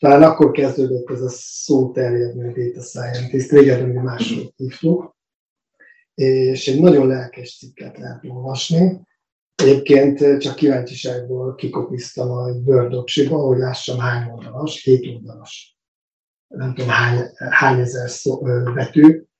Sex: male